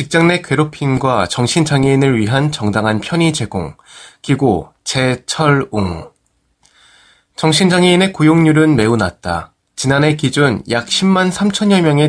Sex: male